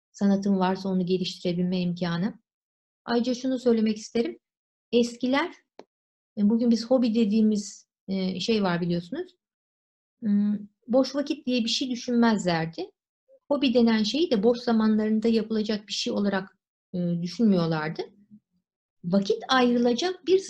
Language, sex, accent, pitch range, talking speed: Turkish, female, native, 190-260 Hz, 110 wpm